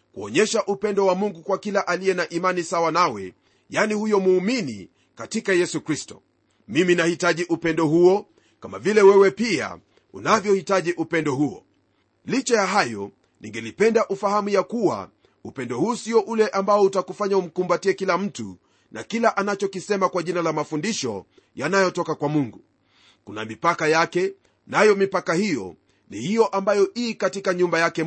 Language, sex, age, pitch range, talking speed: Swahili, male, 40-59, 170-205 Hz, 140 wpm